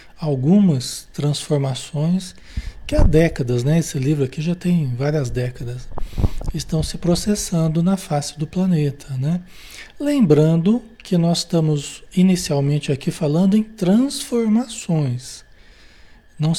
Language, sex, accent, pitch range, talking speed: Portuguese, male, Brazilian, 140-185 Hz, 110 wpm